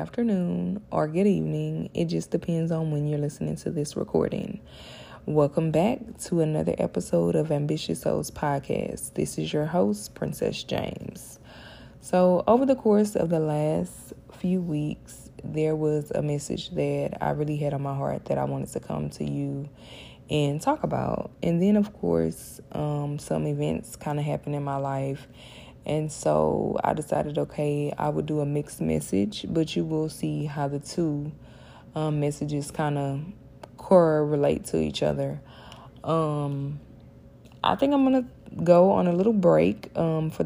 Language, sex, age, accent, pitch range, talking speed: English, female, 20-39, American, 140-165 Hz, 165 wpm